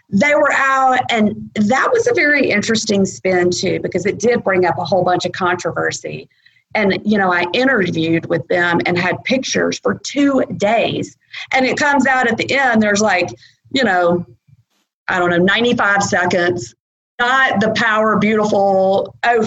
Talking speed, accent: 170 wpm, American